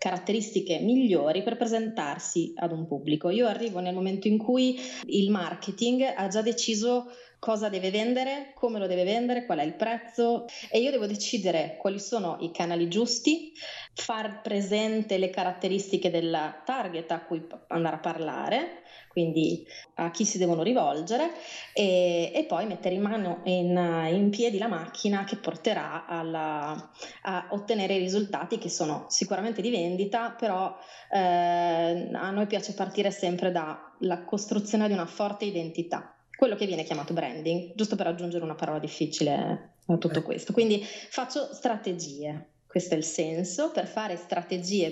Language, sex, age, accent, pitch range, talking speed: Italian, female, 20-39, native, 170-225 Hz, 155 wpm